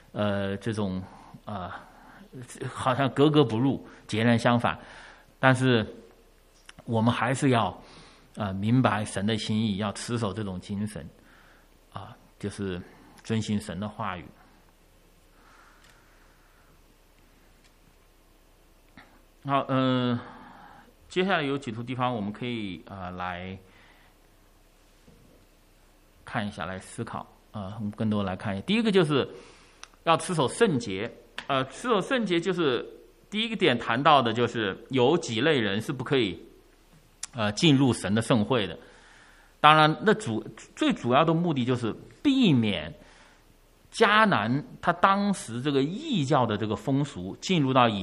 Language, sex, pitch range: English, male, 105-150 Hz